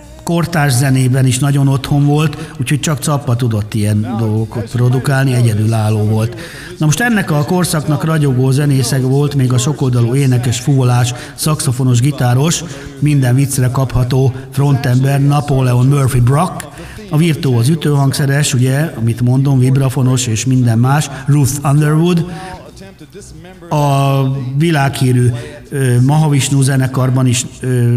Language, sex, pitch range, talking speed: Hungarian, male, 125-150 Hz, 120 wpm